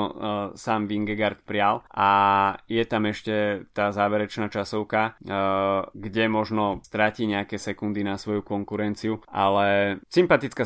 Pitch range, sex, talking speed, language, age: 100-115 Hz, male, 115 wpm, Slovak, 20-39